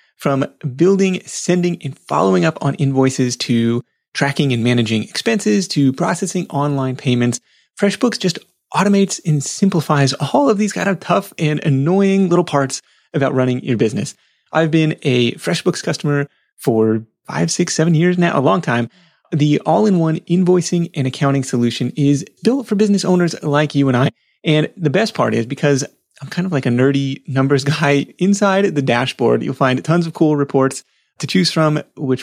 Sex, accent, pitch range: male, American, 135-175 Hz